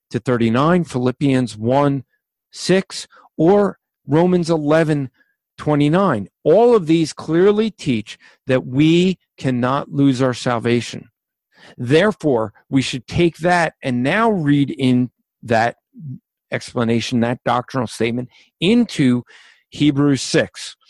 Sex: male